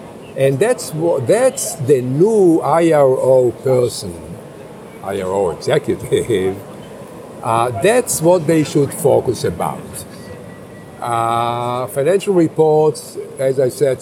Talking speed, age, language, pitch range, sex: 100 wpm, 50-69, English, 120-190 Hz, male